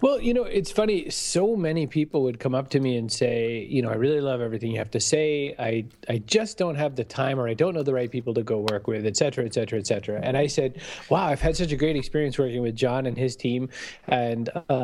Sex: male